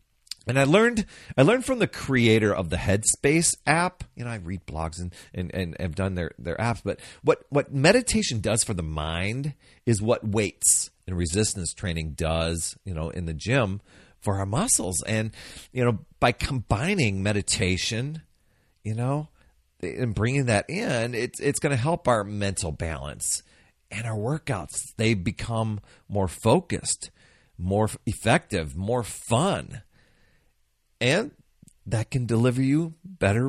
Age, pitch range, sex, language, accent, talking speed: 40-59, 95-130 Hz, male, English, American, 150 wpm